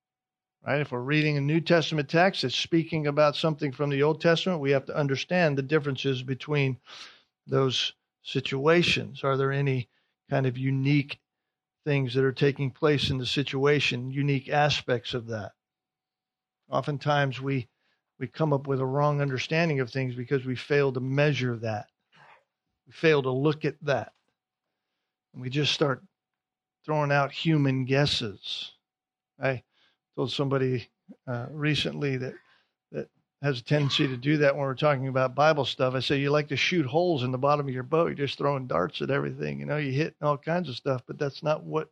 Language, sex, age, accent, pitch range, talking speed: English, male, 50-69, American, 130-150 Hz, 175 wpm